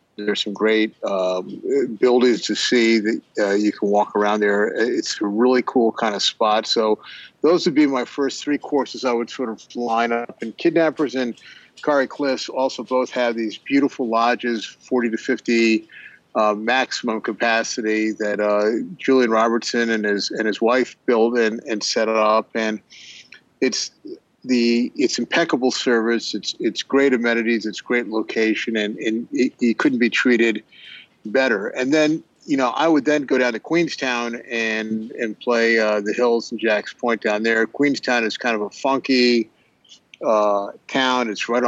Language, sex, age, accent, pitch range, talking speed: English, male, 50-69, American, 110-125 Hz, 170 wpm